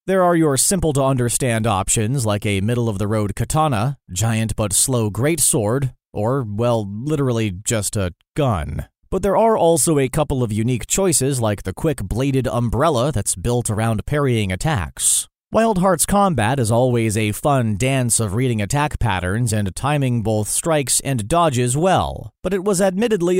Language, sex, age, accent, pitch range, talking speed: English, male, 30-49, American, 115-150 Hz, 150 wpm